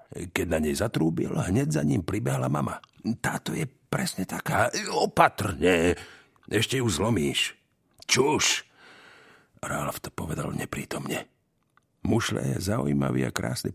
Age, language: 50-69, Slovak